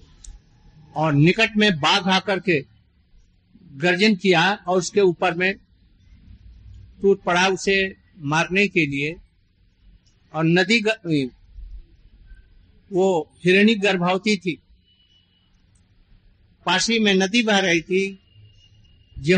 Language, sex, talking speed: Hindi, male, 95 wpm